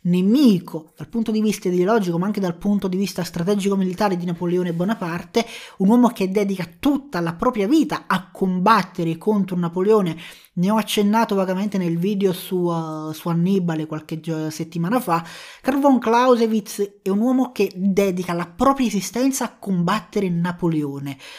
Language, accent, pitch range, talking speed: Italian, native, 180-235 Hz, 150 wpm